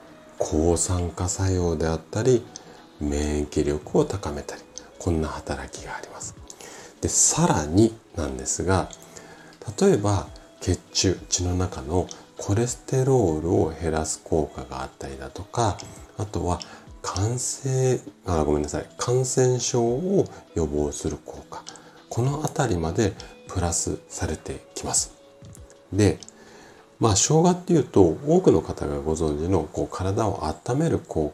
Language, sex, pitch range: Japanese, male, 80-120 Hz